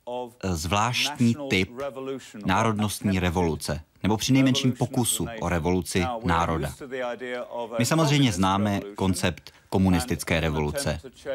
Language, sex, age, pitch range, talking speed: Czech, male, 30-49, 95-130 Hz, 90 wpm